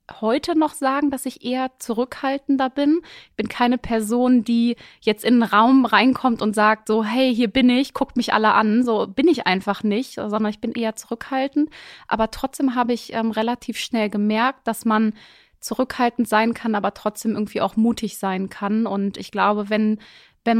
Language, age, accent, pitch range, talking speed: German, 20-39, German, 215-255 Hz, 185 wpm